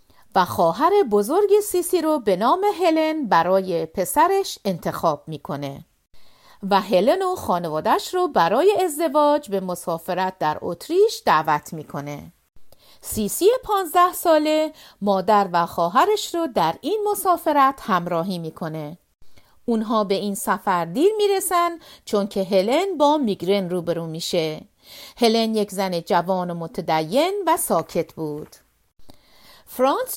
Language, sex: Persian, female